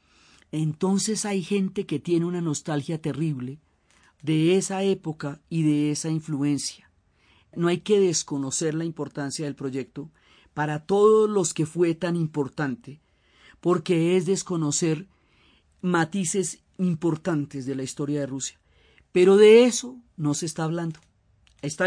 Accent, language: Colombian, Spanish